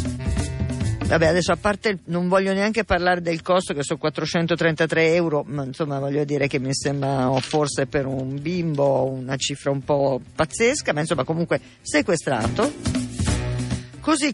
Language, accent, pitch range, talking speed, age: Italian, native, 145-195 Hz, 155 wpm, 50-69